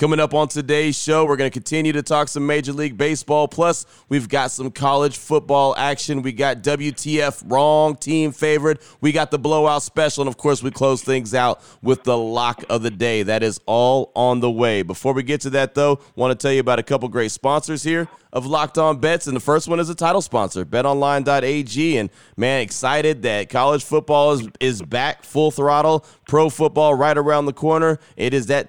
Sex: male